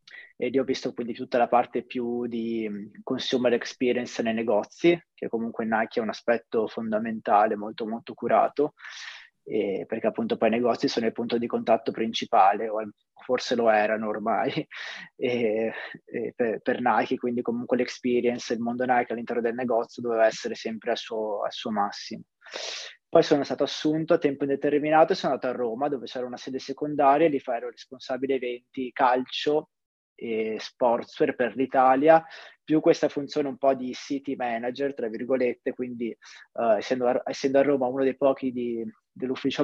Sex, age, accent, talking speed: male, 20-39, native, 165 wpm